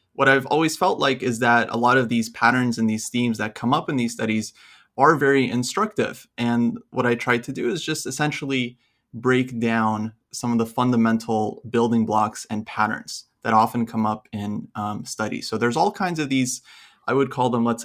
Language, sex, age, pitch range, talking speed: English, male, 30-49, 110-125 Hz, 205 wpm